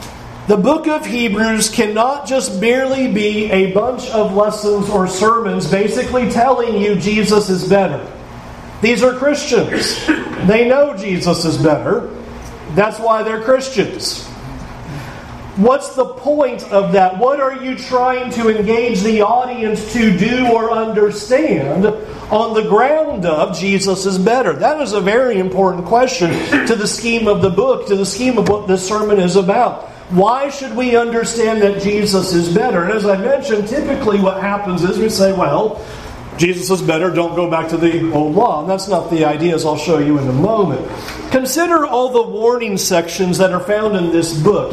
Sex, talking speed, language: male, 170 wpm, English